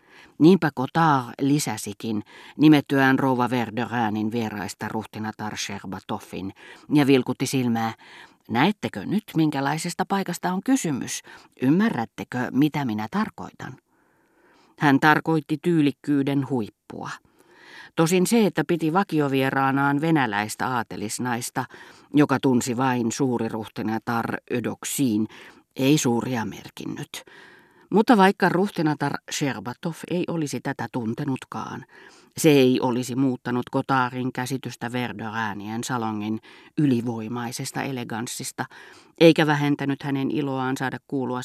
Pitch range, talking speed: 115-150 Hz, 95 wpm